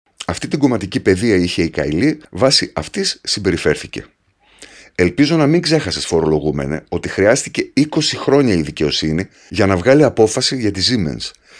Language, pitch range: Greek, 95-140 Hz